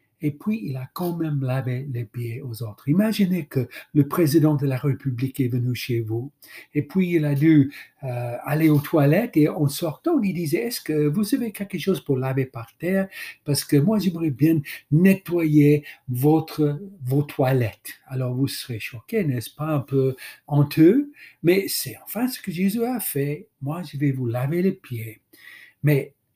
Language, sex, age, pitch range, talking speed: French, male, 60-79, 125-160 Hz, 180 wpm